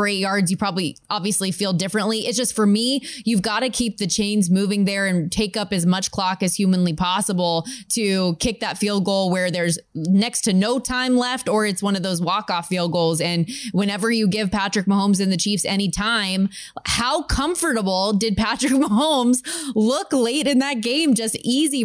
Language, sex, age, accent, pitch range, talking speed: English, female, 20-39, American, 190-240 Hz, 195 wpm